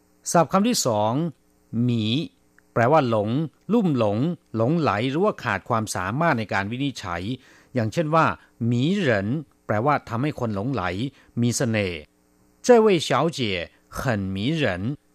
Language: Thai